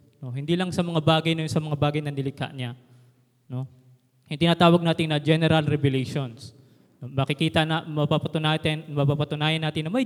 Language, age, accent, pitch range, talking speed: Filipino, 20-39, native, 140-180 Hz, 180 wpm